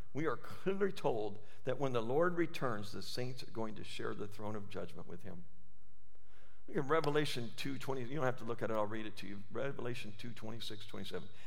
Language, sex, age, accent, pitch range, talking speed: English, male, 50-69, American, 105-145 Hz, 220 wpm